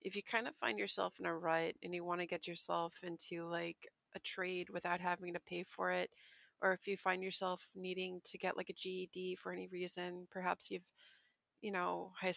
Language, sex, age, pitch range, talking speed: English, female, 30-49, 175-190 Hz, 215 wpm